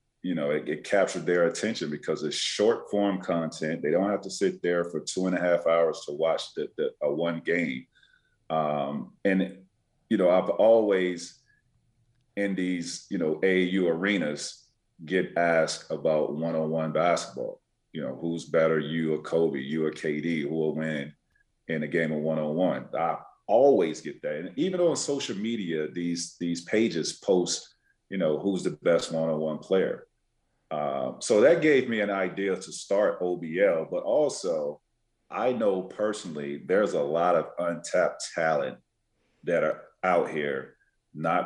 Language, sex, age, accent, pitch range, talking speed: English, male, 40-59, American, 80-100 Hz, 160 wpm